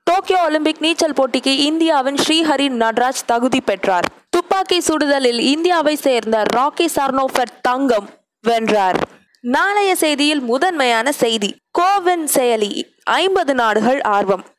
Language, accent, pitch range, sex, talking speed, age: Tamil, native, 215-305 Hz, female, 105 wpm, 20-39